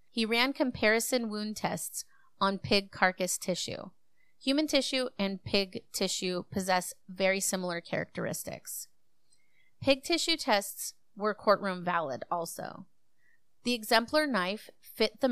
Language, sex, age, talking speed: English, female, 30-49, 120 wpm